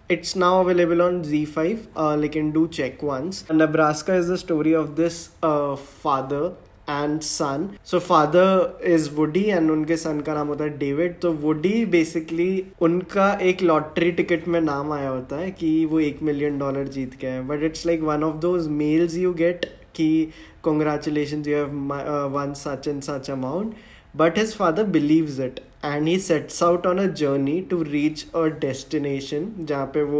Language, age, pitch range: English, 20-39, 140-165 Hz